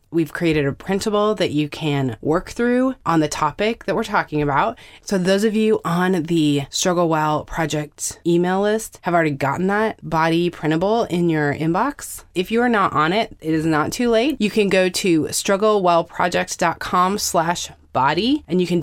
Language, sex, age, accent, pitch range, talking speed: English, female, 20-39, American, 145-190 Hz, 180 wpm